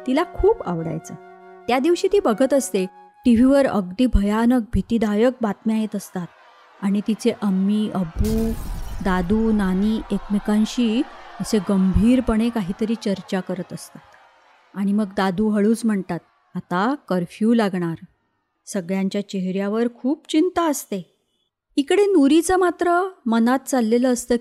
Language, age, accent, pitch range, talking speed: Marathi, 30-49, native, 195-265 Hz, 120 wpm